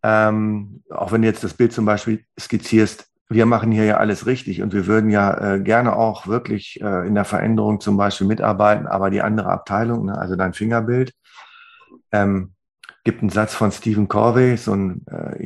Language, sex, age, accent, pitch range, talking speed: German, male, 40-59, German, 95-110 Hz, 185 wpm